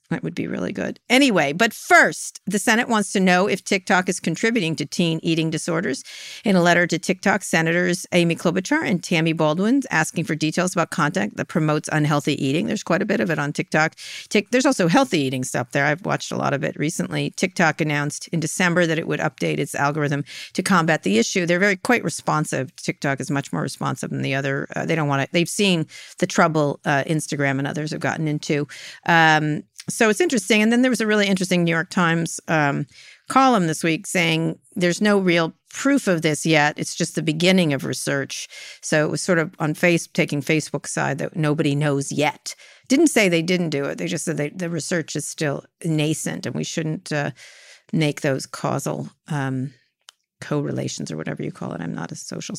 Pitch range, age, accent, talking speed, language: 150-190 Hz, 50-69, American, 205 wpm, English